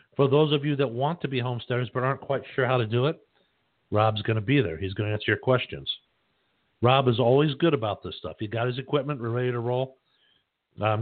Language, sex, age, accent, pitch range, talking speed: English, male, 60-79, American, 110-140 Hz, 235 wpm